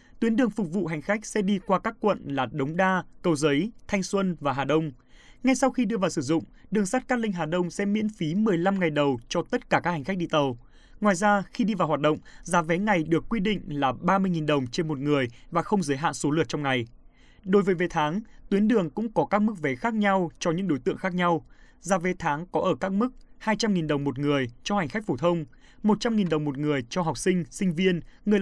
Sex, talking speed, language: male, 255 wpm, Vietnamese